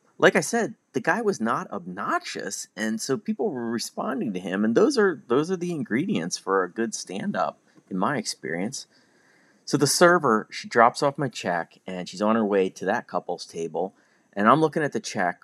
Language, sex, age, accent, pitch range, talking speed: English, male, 30-49, American, 105-160 Hz, 200 wpm